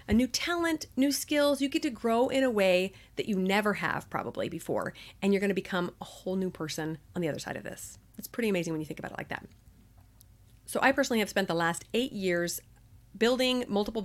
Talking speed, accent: 225 wpm, American